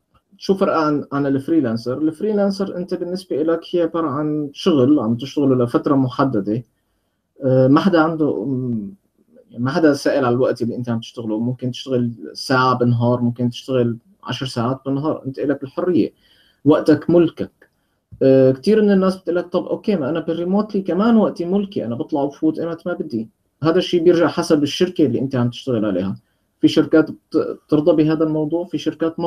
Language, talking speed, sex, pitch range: Arabic, 165 wpm, male, 125-165 Hz